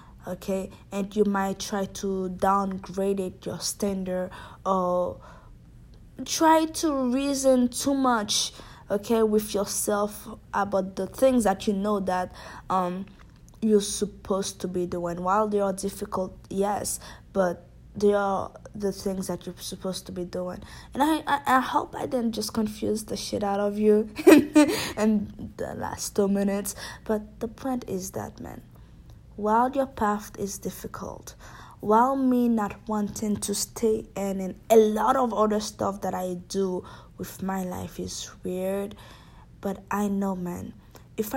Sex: female